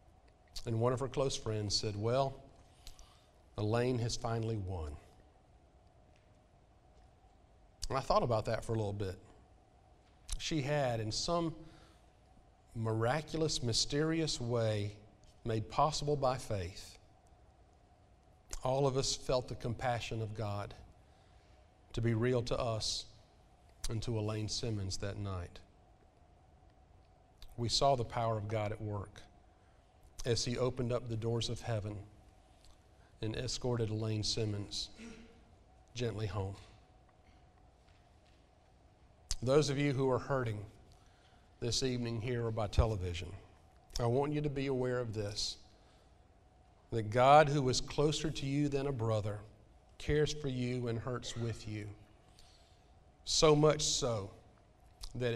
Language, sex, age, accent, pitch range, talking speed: English, male, 50-69, American, 100-125 Hz, 125 wpm